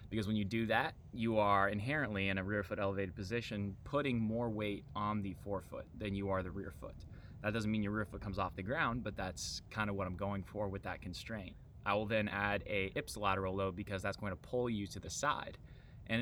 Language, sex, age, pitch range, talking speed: English, male, 20-39, 95-110 Hz, 235 wpm